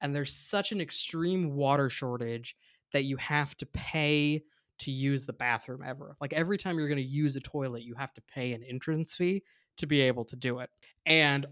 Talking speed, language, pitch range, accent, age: 210 wpm, English, 130-165 Hz, American, 20-39